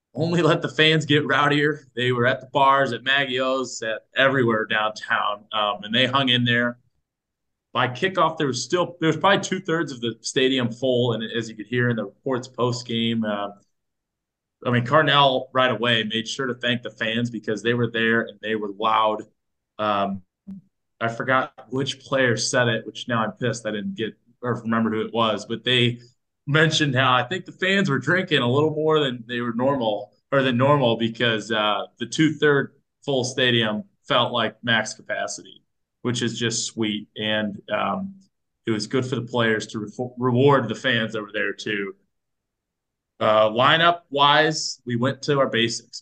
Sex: male